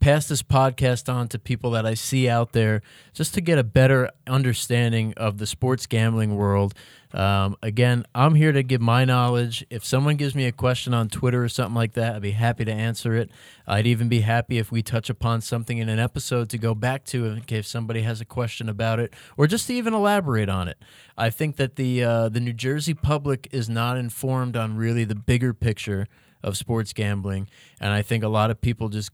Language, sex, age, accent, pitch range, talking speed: English, male, 30-49, American, 110-125 Hz, 220 wpm